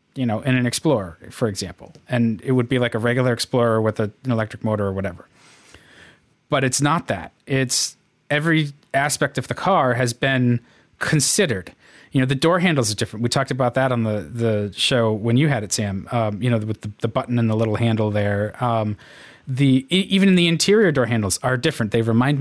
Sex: male